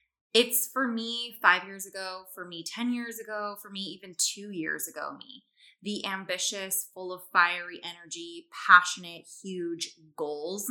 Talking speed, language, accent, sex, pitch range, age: 150 wpm, English, American, female, 165-225 Hz, 20-39